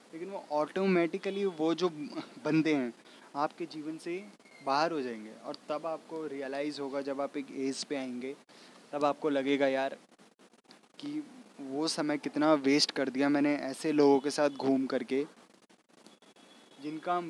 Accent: native